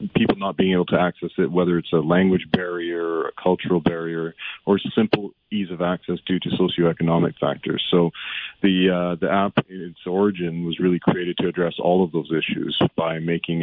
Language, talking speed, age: English, 195 wpm, 40-59